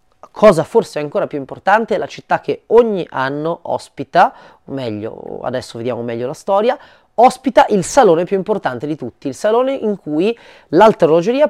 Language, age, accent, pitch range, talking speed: Italian, 30-49, native, 140-225 Hz, 165 wpm